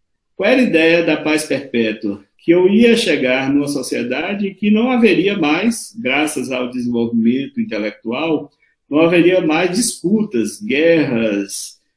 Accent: Brazilian